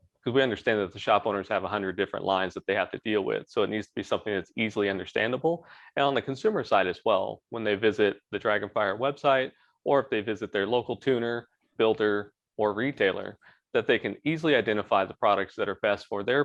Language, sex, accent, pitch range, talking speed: English, male, American, 100-125 Hz, 225 wpm